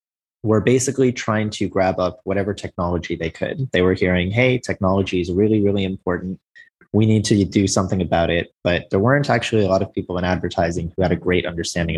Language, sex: English, male